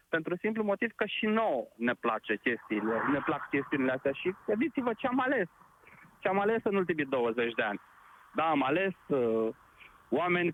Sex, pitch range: male, 155-220 Hz